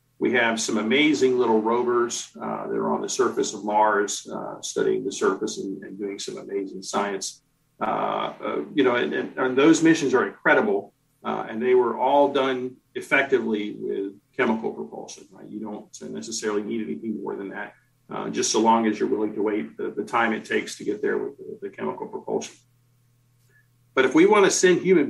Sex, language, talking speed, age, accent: male, English, 200 wpm, 50-69, American